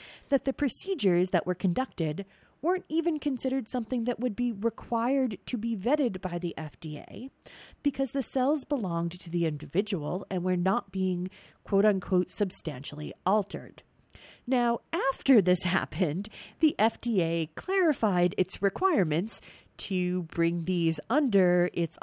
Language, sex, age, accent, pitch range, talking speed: English, female, 40-59, American, 165-240 Hz, 130 wpm